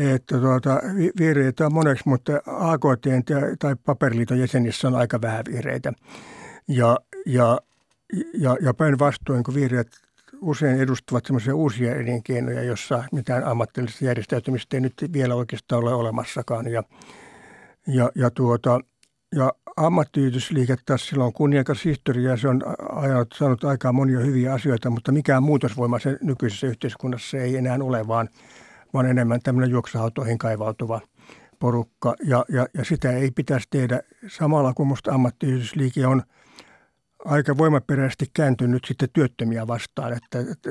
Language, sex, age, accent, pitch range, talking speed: Finnish, male, 60-79, native, 120-140 Hz, 135 wpm